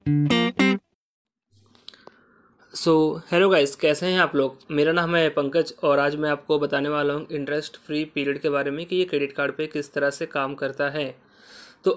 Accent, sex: native, male